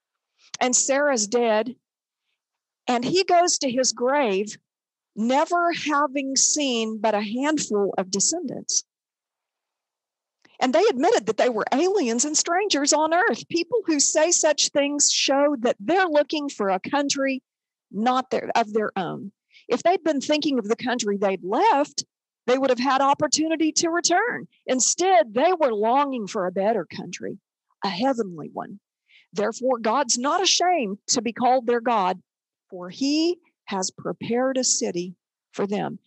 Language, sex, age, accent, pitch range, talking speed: English, female, 50-69, American, 230-315 Hz, 145 wpm